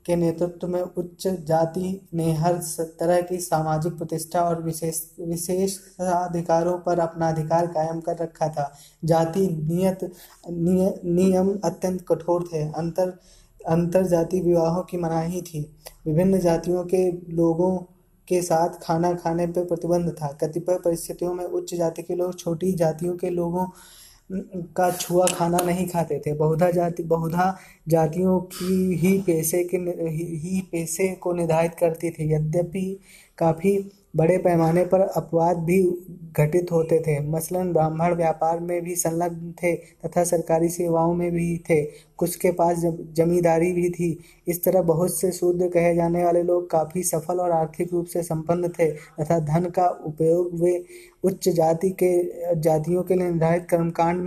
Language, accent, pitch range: Hindi, native, 165-180 Hz